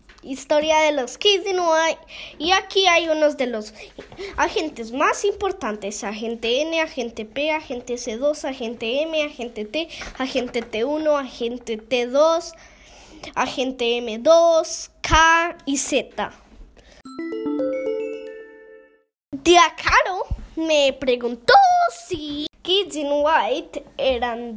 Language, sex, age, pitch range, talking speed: English, female, 20-39, 225-300 Hz, 105 wpm